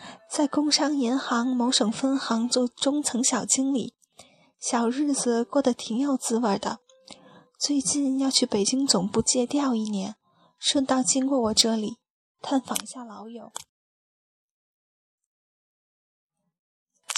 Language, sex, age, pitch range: Chinese, female, 10-29, 230-270 Hz